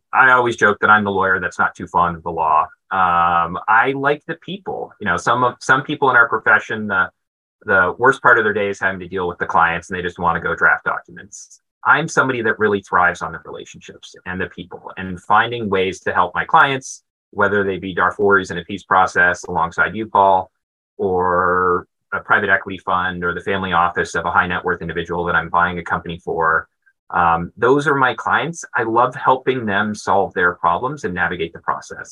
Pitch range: 90-110 Hz